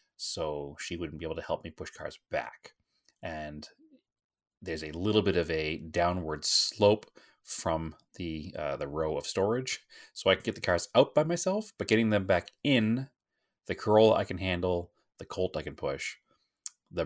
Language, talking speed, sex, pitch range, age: English, 185 wpm, male, 80-105 Hz, 30-49